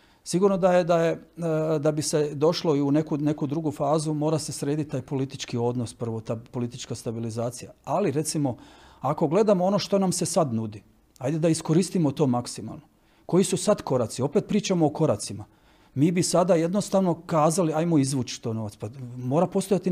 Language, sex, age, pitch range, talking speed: Croatian, male, 40-59, 135-165 Hz, 180 wpm